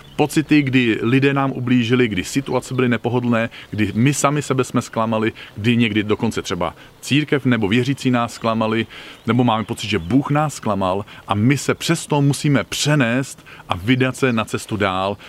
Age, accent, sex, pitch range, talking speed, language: 40-59, native, male, 115-145 Hz, 170 wpm, Czech